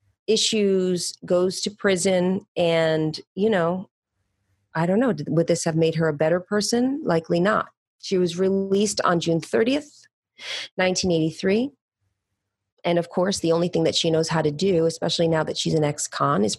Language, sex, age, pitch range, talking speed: English, female, 30-49, 155-190 Hz, 165 wpm